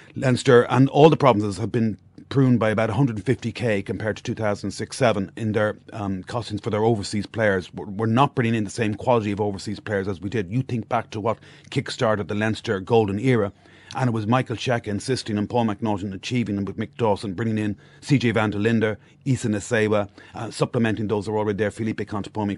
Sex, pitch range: male, 105-125 Hz